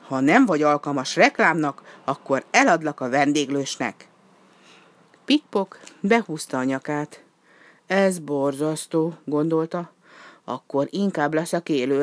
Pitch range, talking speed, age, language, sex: 145-205 Hz, 100 wpm, 50-69, Hungarian, female